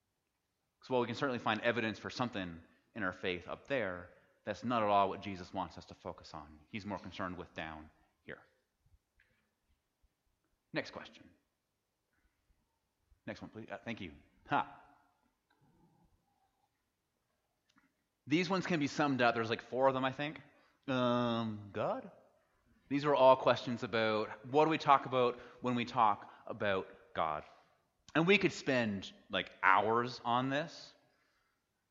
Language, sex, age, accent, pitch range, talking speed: English, male, 30-49, American, 95-130 Hz, 145 wpm